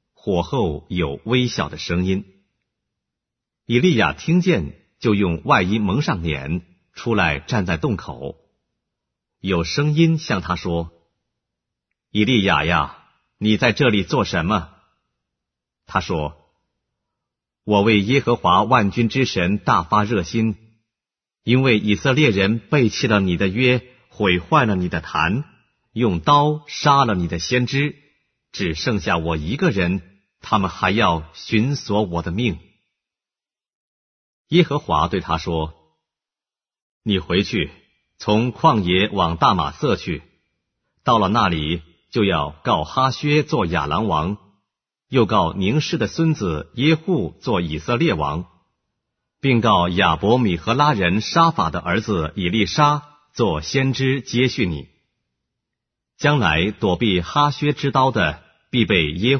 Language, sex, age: English, male, 50-69